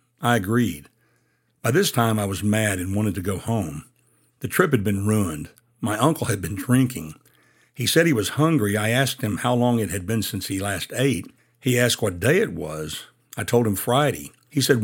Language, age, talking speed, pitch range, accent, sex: English, 60-79, 210 wpm, 100-125 Hz, American, male